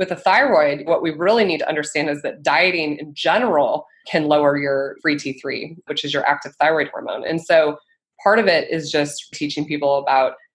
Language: English